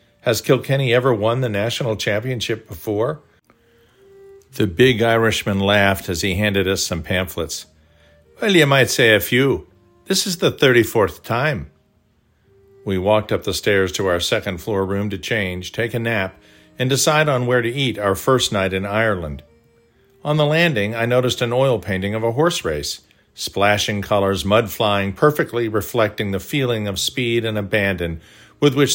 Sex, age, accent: male, 50-69, American